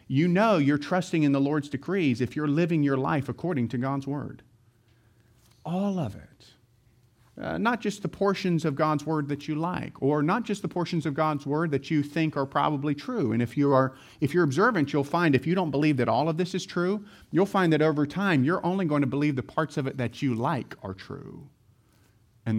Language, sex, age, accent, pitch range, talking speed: English, male, 40-59, American, 120-155 Hz, 225 wpm